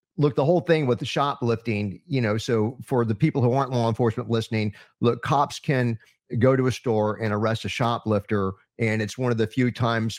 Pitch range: 100-120 Hz